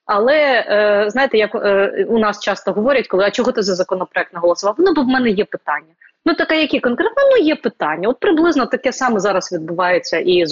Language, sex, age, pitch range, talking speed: Ukrainian, female, 20-39, 195-265 Hz, 210 wpm